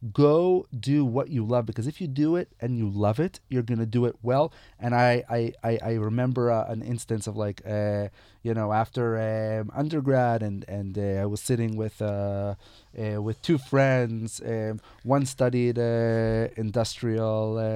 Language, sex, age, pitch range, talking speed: Hebrew, male, 30-49, 110-130 Hz, 185 wpm